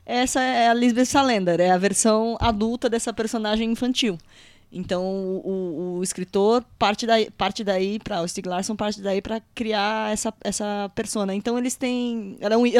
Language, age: Portuguese, 10-29